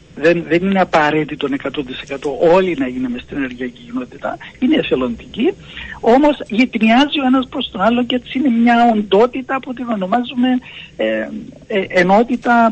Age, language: 60-79, Greek